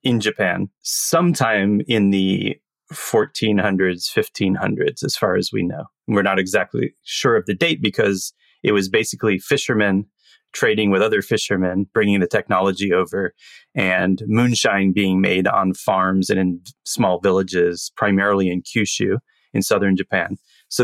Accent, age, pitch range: American, 30-49, 95-110 Hz